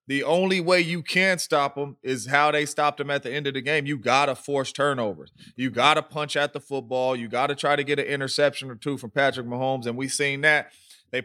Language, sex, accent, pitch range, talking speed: English, male, American, 120-145 Hz, 255 wpm